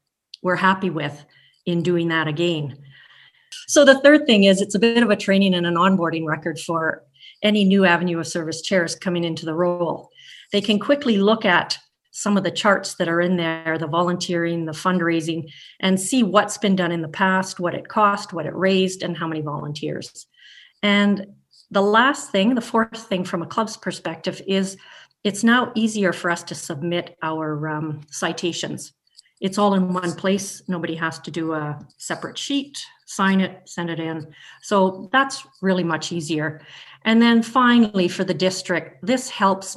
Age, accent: 40-59, American